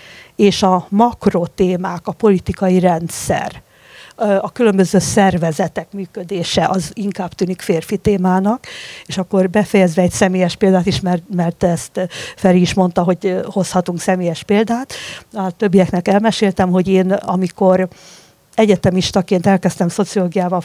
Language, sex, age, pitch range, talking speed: Hungarian, female, 50-69, 180-200 Hz, 115 wpm